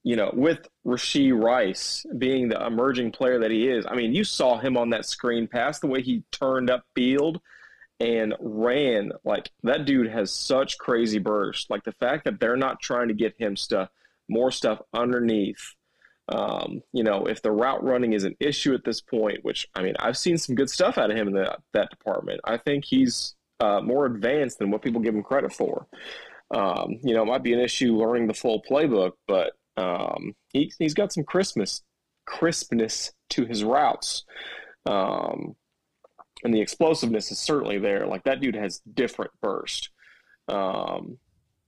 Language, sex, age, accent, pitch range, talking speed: English, male, 30-49, American, 110-135 Hz, 180 wpm